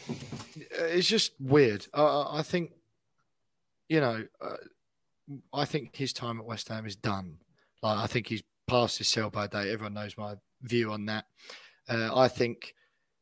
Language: English